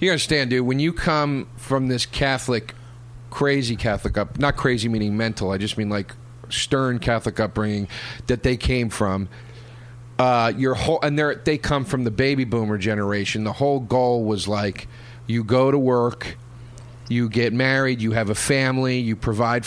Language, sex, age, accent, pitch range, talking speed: English, male, 40-59, American, 115-140 Hz, 170 wpm